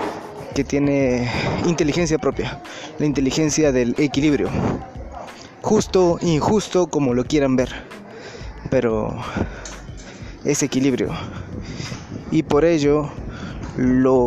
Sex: male